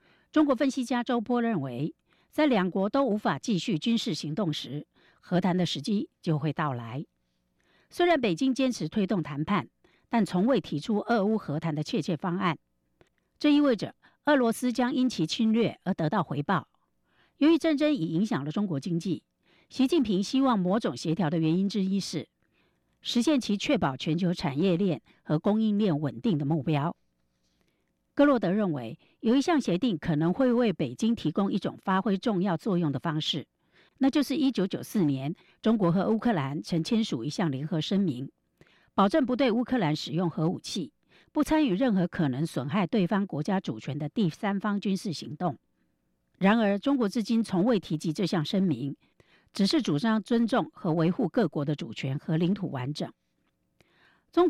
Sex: female